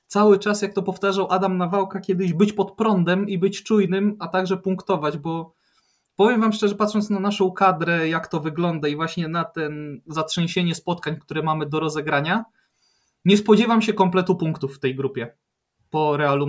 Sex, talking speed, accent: male, 175 wpm, native